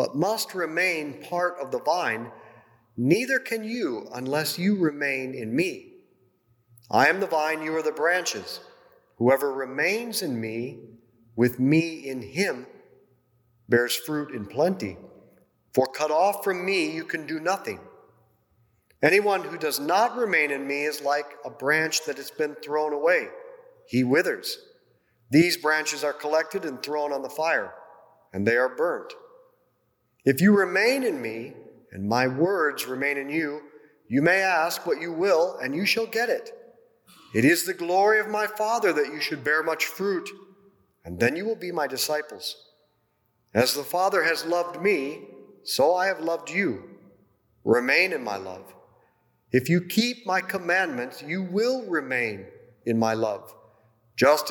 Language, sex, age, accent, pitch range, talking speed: English, male, 40-59, American, 135-200 Hz, 160 wpm